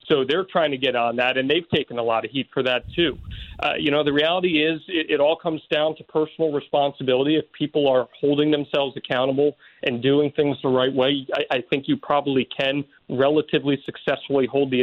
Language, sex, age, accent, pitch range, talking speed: English, male, 40-59, American, 130-160 Hz, 215 wpm